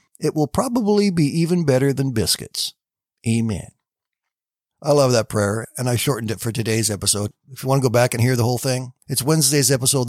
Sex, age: male, 60-79